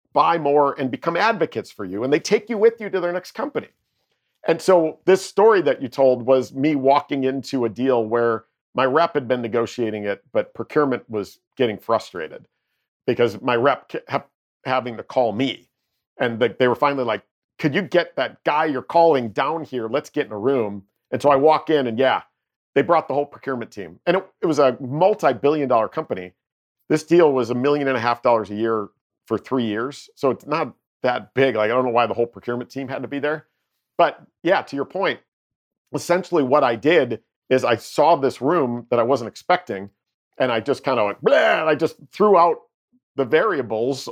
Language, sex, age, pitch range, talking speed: English, male, 50-69, 120-155 Hz, 210 wpm